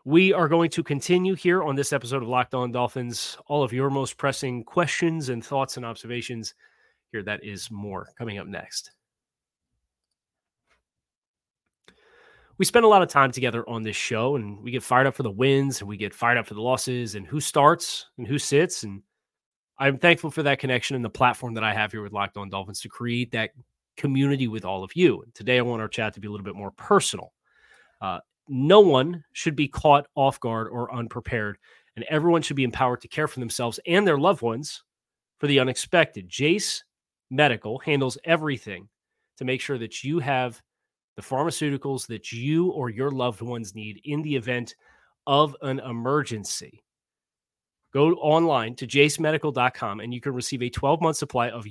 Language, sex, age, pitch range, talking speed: English, male, 30-49, 115-145 Hz, 190 wpm